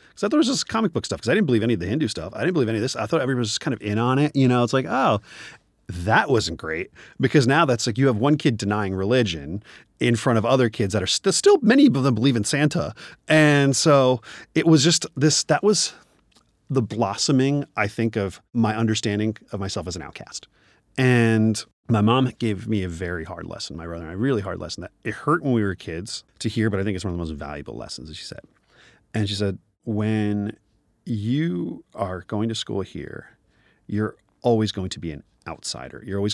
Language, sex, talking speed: English, male, 235 wpm